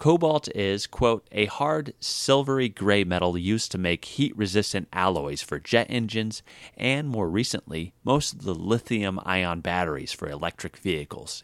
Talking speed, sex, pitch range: 140 wpm, male, 85-115 Hz